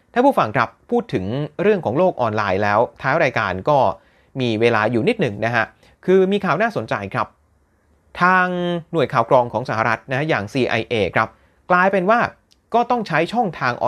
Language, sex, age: Thai, male, 30-49